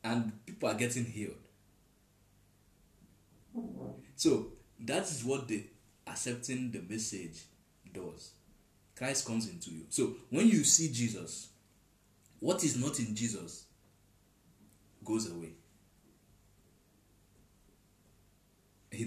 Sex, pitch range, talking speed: male, 100-120 Hz, 100 wpm